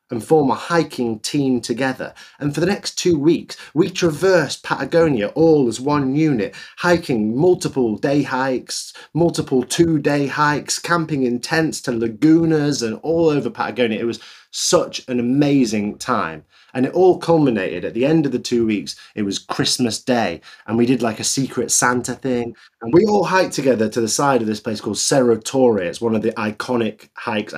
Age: 30-49